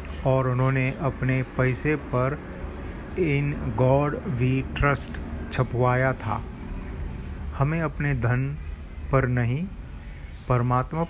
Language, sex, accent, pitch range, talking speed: Hindi, male, native, 95-135 Hz, 90 wpm